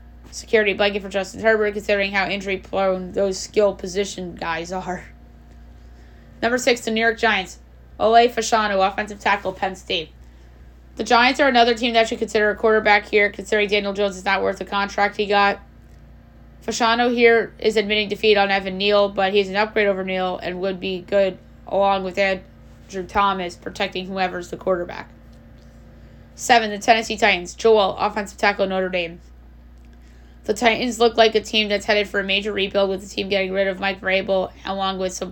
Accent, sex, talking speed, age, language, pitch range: American, female, 180 wpm, 20-39, English, 185-210 Hz